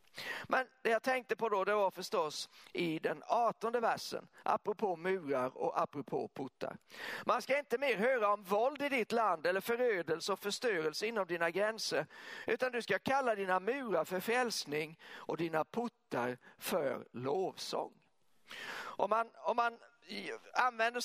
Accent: native